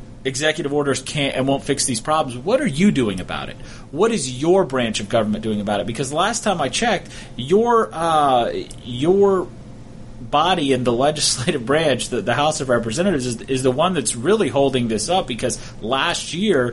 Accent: American